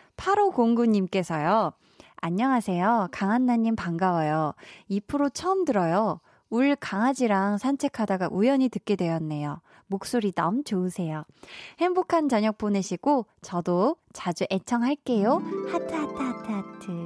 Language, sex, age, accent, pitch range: Korean, female, 20-39, native, 185-270 Hz